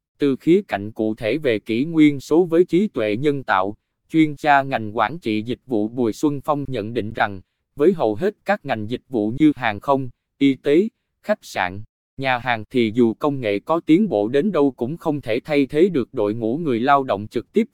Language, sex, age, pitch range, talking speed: Vietnamese, male, 20-39, 110-150 Hz, 220 wpm